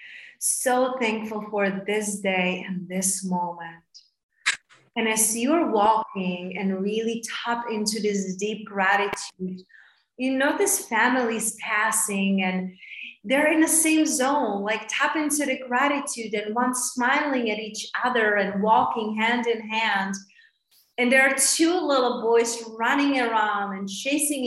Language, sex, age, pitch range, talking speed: English, female, 30-49, 210-275 Hz, 135 wpm